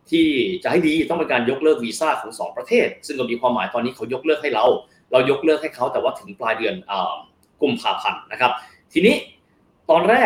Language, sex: Thai, male